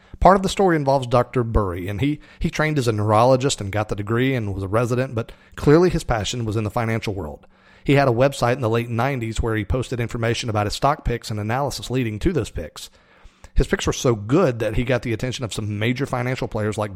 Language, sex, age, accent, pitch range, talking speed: English, male, 40-59, American, 110-130 Hz, 245 wpm